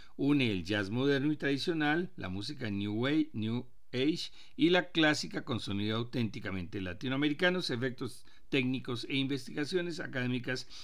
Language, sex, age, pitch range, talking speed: Spanish, male, 50-69, 105-150 Hz, 120 wpm